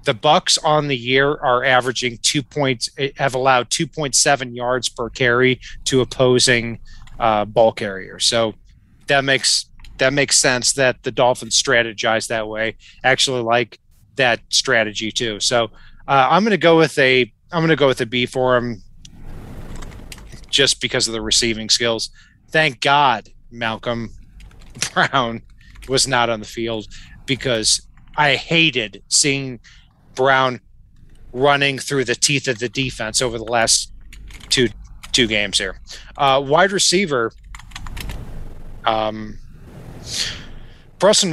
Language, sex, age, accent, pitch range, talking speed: English, male, 30-49, American, 115-140 Hz, 140 wpm